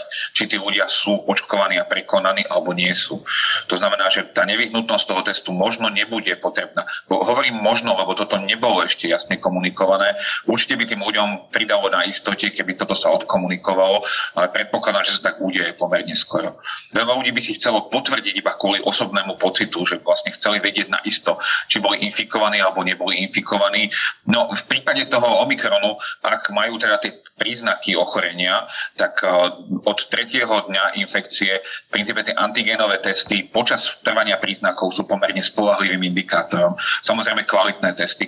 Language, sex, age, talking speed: Slovak, male, 40-59, 155 wpm